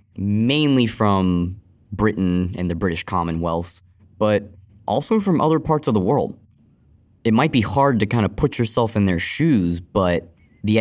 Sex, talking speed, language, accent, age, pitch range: male, 160 wpm, English, American, 20-39, 90-110 Hz